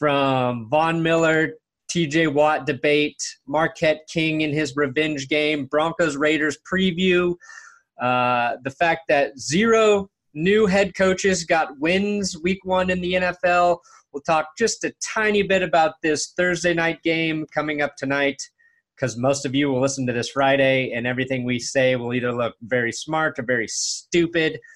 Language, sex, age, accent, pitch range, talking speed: English, male, 30-49, American, 145-195 Hz, 160 wpm